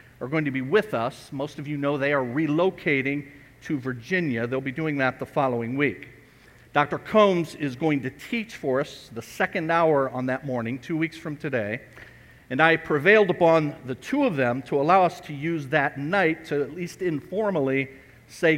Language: English